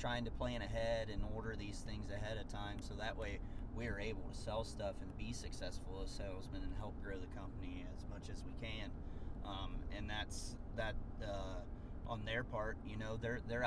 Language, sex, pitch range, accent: English, male, 95-120 Hz, American